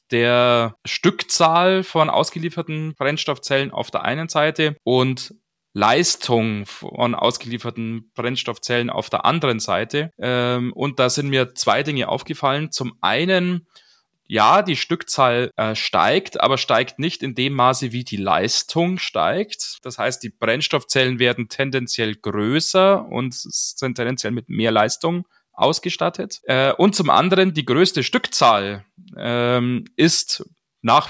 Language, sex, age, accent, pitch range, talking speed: German, male, 20-39, German, 120-160 Hz, 120 wpm